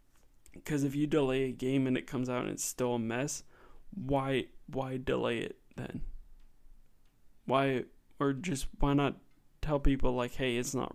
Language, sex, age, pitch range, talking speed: English, male, 20-39, 125-140 Hz, 170 wpm